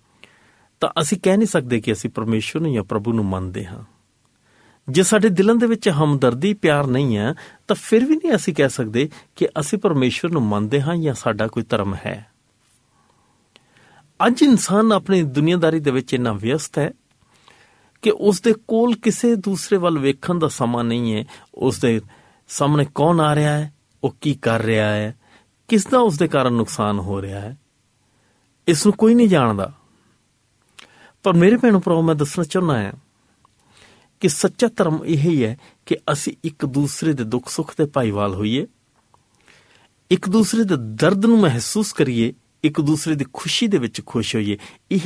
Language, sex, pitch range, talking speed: Punjabi, male, 115-180 Hz, 170 wpm